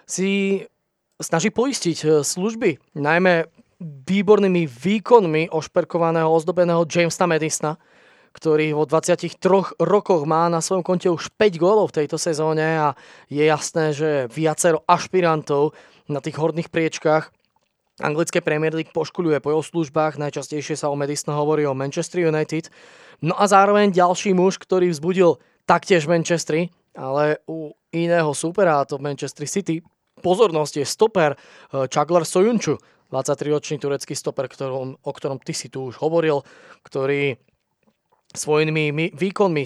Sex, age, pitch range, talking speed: male, 20-39, 145-175 Hz, 125 wpm